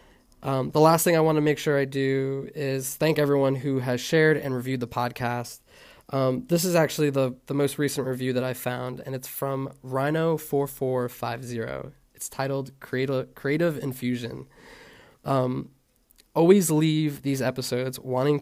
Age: 20-39